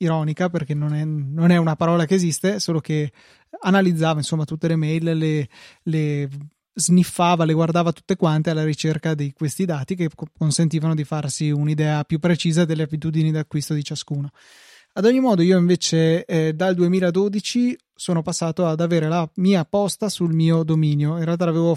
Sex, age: male, 20-39